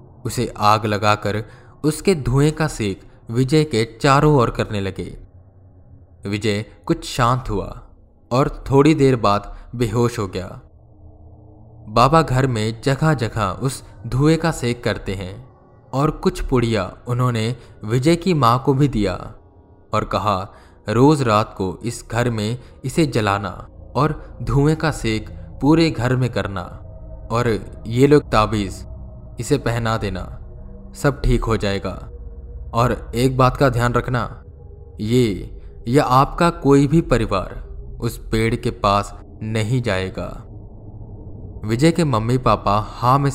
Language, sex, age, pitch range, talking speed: Hindi, male, 20-39, 100-125 Hz, 135 wpm